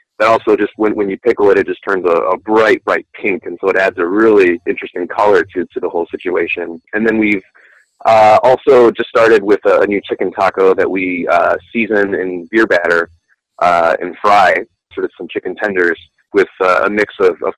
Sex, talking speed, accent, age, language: male, 210 wpm, American, 20-39, English